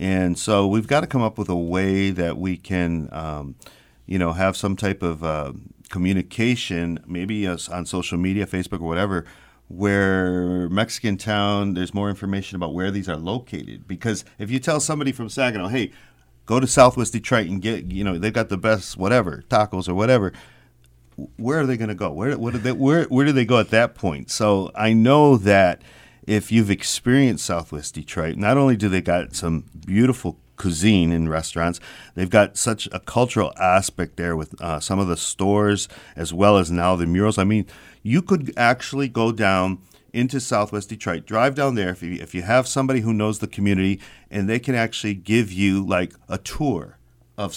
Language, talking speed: English, 195 wpm